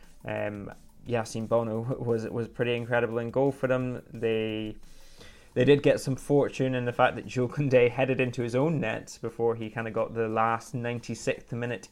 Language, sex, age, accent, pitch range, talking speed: English, male, 20-39, British, 115-130 Hz, 180 wpm